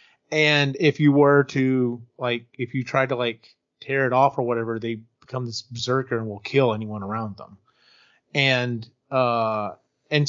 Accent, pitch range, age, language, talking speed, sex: American, 120-145 Hz, 30-49, English, 170 wpm, male